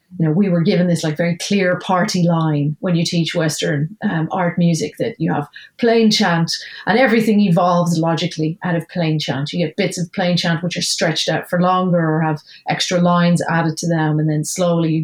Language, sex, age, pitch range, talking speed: English, female, 40-59, 165-190 Hz, 215 wpm